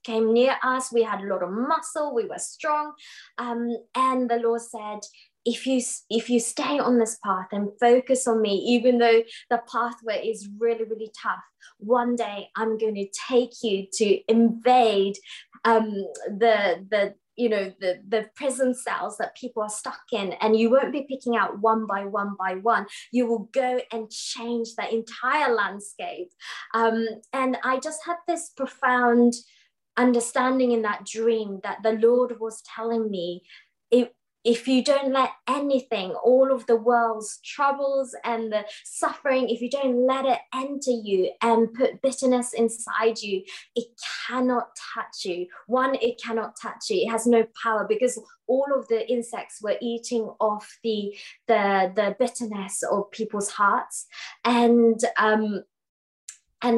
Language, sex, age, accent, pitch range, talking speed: English, female, 20-39, British, 215-255 Hz, 160 wpm